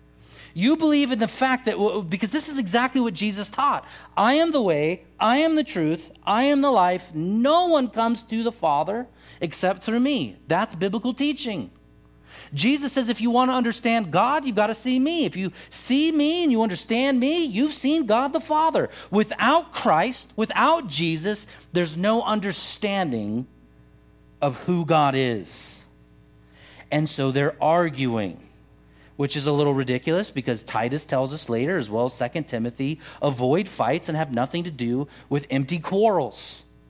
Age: 40-59